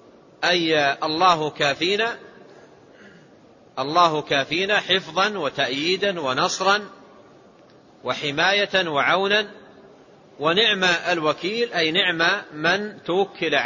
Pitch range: 150-195 Hz